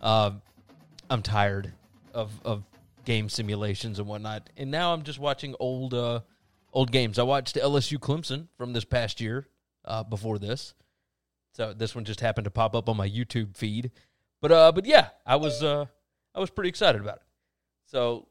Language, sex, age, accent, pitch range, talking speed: English, male, 30-49, American, 115-160 Hz, 185 wpm